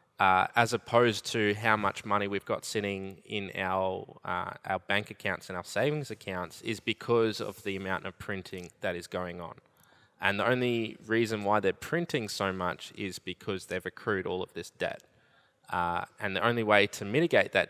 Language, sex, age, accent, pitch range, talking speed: English, male, 20-39, Australian, 100-115 Hz, 190 wpm